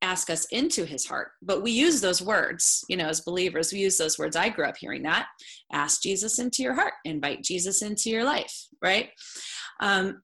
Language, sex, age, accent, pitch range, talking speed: English, female, 30-49, American, 165-210 Hz, 205 wpm